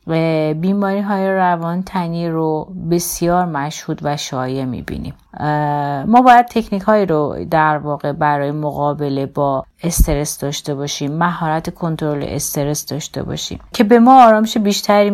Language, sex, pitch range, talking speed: Persian, female, 150-200 Hz, 135 wpm